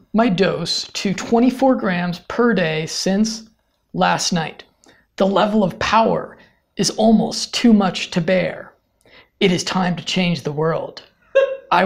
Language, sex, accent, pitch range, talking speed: English, male, American, 165-215 Hz, 140 wpm